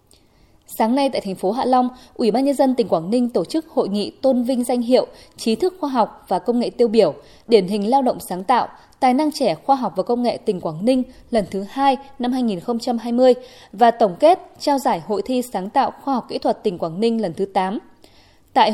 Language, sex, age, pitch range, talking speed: Vietnamese, female, 20-39, 200-260 Hz, 235 wpm